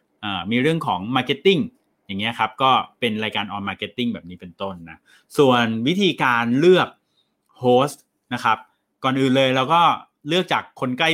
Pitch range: 120-155 Hz